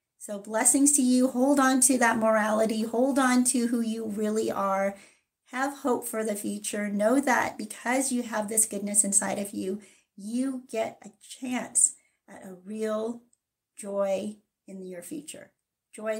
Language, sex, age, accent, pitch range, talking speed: English, female, 40-59, American, 205-260 Hz, 160 wpm